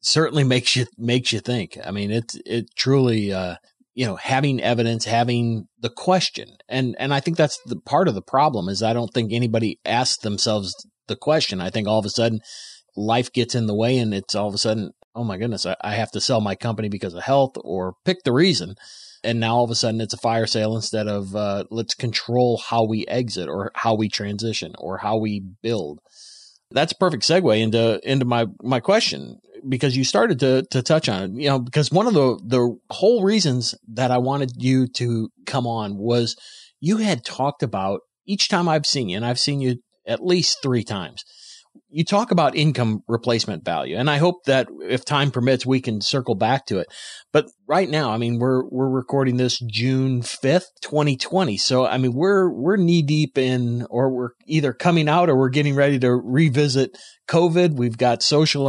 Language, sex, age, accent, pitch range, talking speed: English, male, 30-49, American, 115-145 Hz, 210 wpm